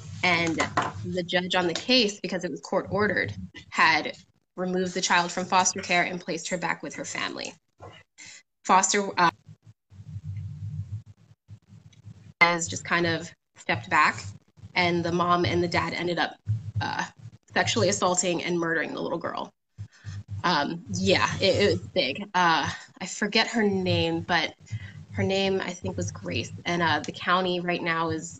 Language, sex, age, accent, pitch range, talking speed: English, female, 20-39, American, 110-180 Hz, 155 wpm